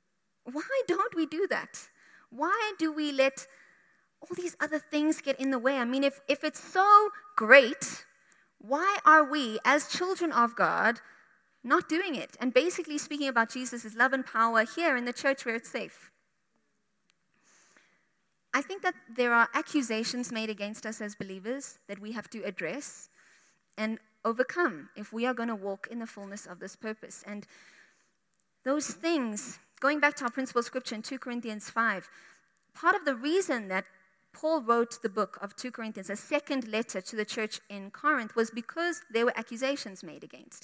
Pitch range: 215-285 Hz